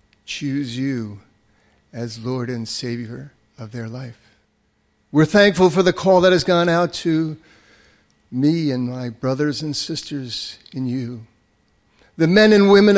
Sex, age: male, 50-69